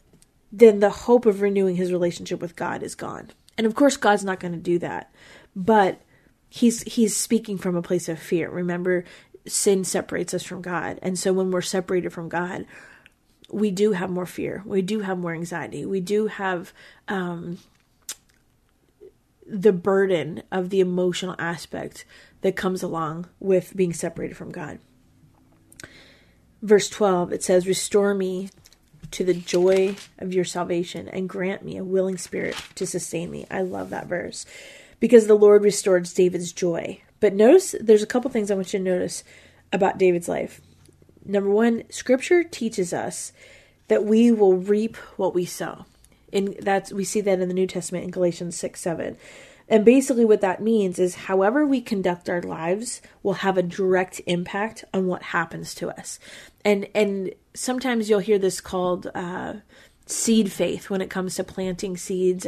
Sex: female